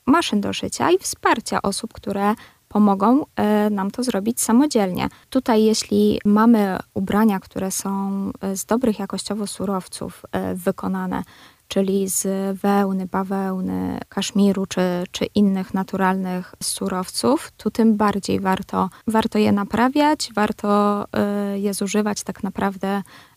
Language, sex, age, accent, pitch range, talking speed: Polish, female, 20-39, native, 195-225 Hz, 115 wpm